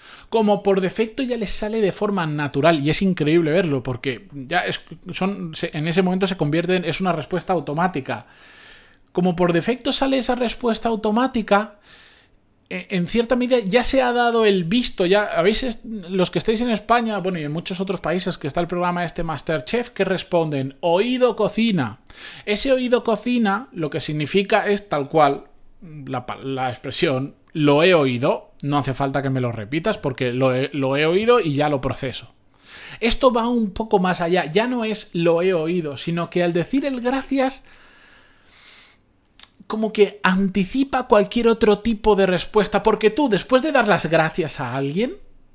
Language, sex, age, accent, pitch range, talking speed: Spanish, male, 20-39, Spanish, 155-225 Hz, 175 wpm